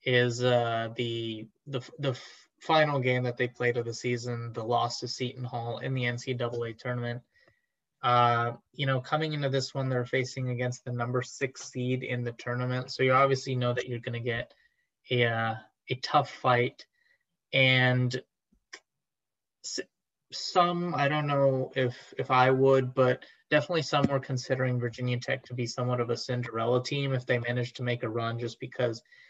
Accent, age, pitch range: American, 20-39, 120-140 Hz